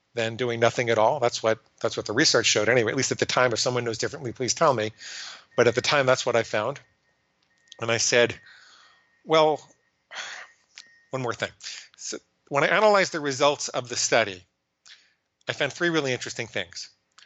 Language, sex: English, male